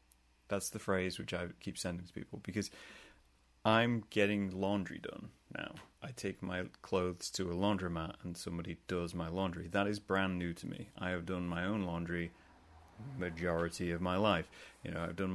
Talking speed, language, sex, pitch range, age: 185 wpm, English, male, 85-120 Hz, 30-49